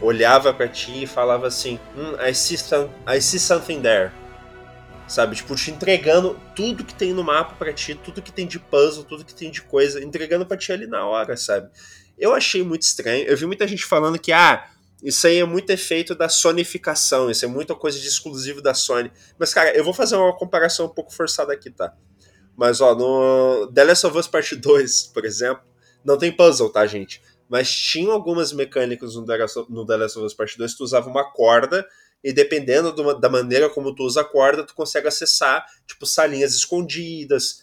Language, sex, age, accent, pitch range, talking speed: Portuguese, male, 20-39, Brazilian, 130-175 Hz, 205 wpm